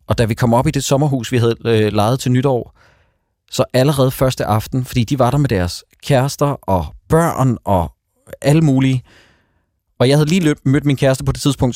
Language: Danish